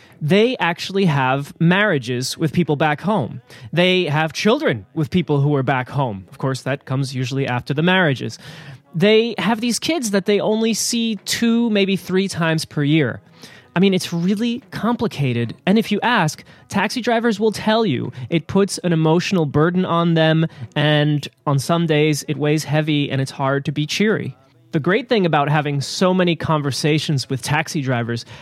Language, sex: English, male